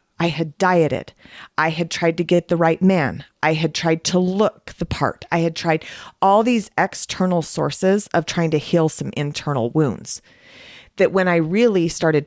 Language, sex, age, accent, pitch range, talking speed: English, female, 40-59, American, 150-185 Hz, 180 wpm